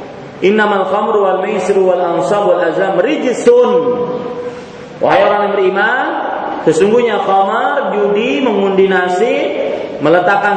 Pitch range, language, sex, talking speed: 205-285 Hz, Malay, male, 95 wpm